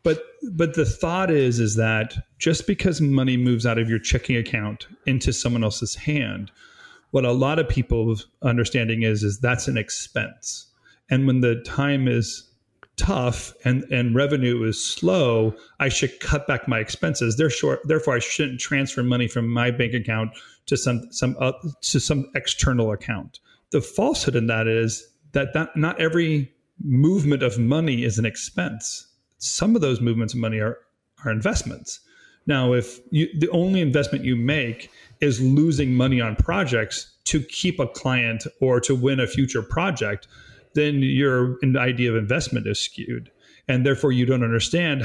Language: English